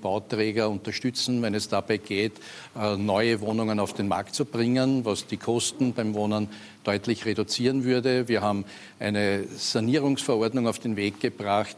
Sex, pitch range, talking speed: male, 105-120 Hz, 150 wpm